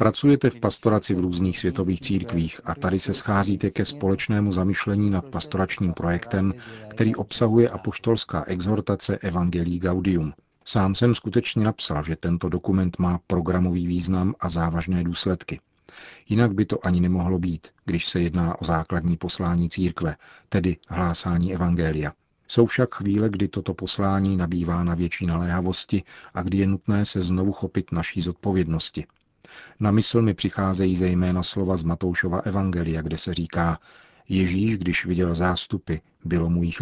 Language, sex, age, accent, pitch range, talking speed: Czech, male, 40-59, native, 85-100 Hz, 145 wpm